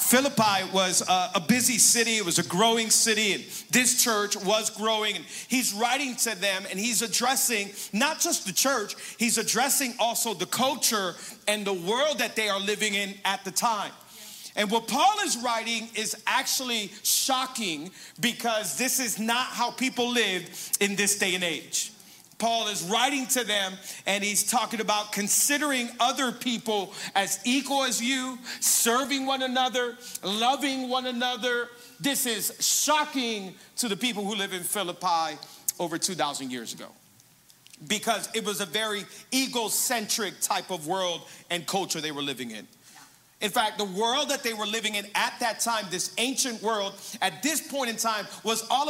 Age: 40-59